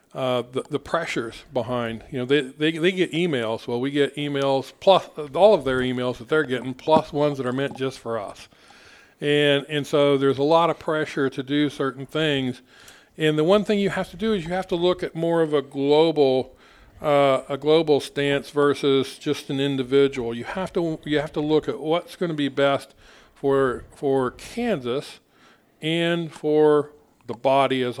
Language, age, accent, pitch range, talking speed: English, 50-69, American, 130-165 Hz, 195 wpm